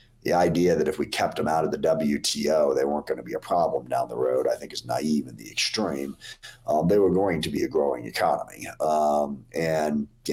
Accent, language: American, English